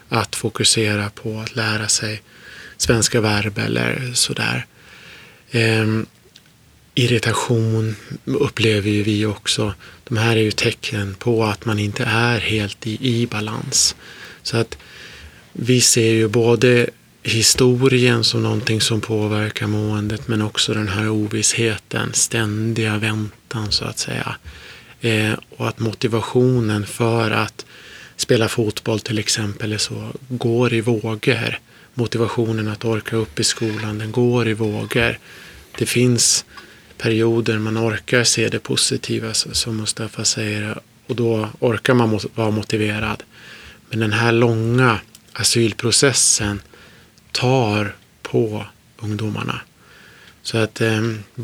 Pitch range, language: 105-115 Hz, Swedish